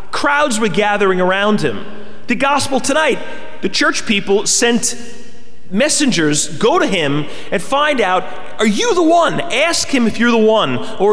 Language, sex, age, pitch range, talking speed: English, male, 30-49, 195-270 Hz, 160 wpm